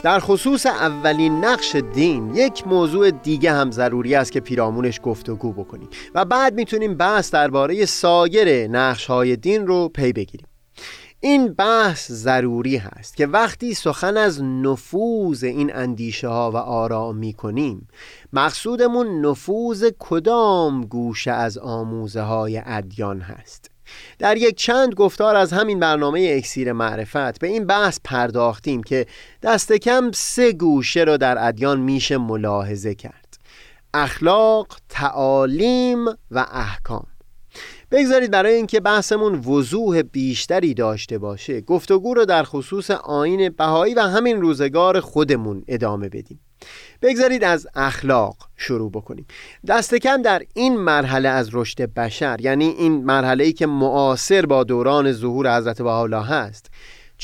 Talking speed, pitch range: 130 wpm, 120-200 Hz